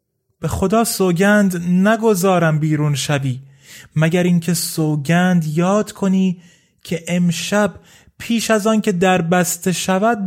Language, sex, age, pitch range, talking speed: Persian, male, 30-49, 135-185 Hz, 105 wpm